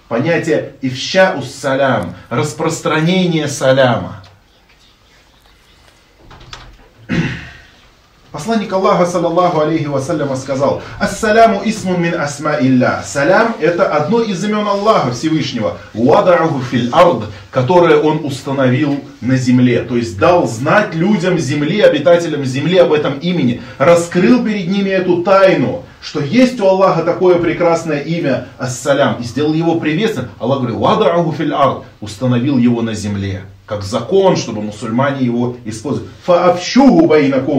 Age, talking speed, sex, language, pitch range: 30-49, 115 wpm, male, Russian, 135-185 Hz